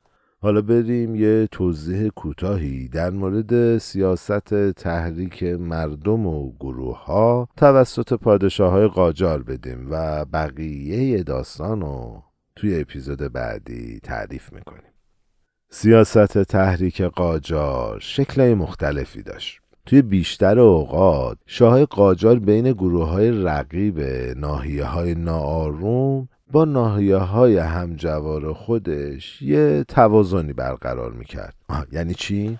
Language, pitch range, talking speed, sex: Persian, 75-115 Hz, 100 wpm, male